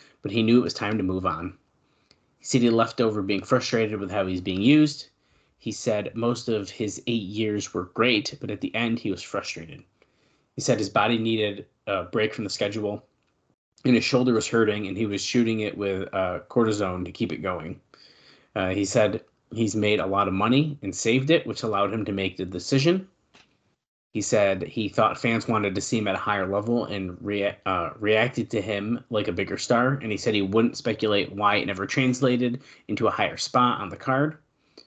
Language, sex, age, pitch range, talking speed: English, male, 20-39, 100-125 Hz, 210 wpm